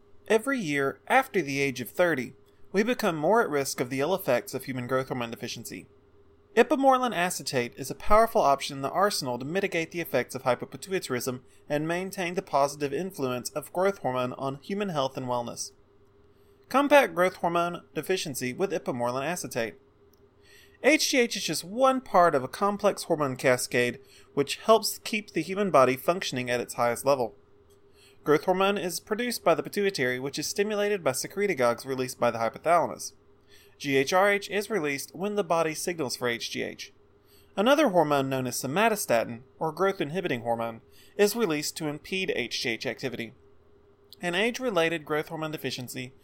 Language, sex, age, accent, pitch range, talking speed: English, male, 30-49, American, 125-190 Hz, 155 wpm